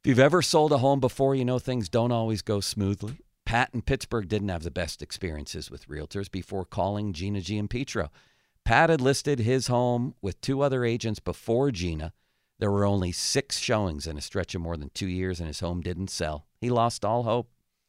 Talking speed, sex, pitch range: 210 wpm, male, 90-125 Hz